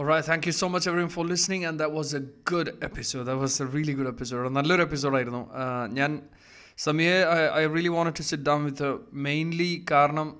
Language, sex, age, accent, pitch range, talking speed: Malayalam, male, 20-39, native, 135-155 Hz, 210 wpm